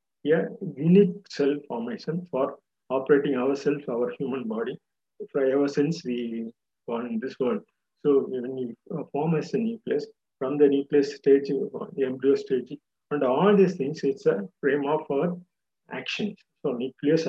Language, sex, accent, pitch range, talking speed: Tamil, male, native, 135-195 Hz, 160 wpm